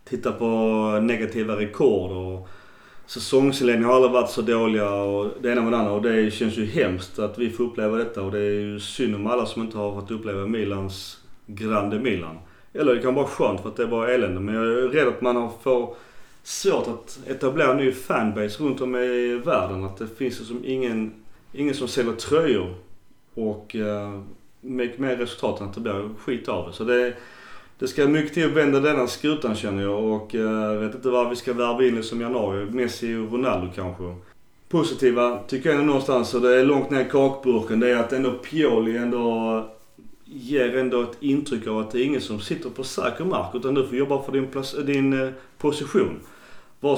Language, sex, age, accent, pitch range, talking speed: Swedish, male, 30-49, native, 105-130 Hz, 205 wpm